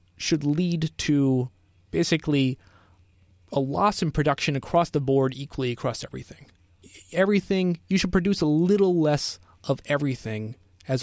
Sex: male